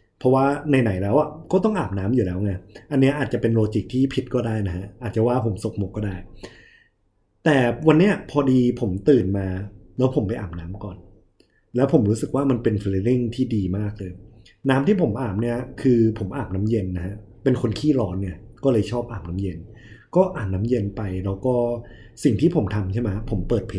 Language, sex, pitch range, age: Thai, male, 100-130 Hz, 20-39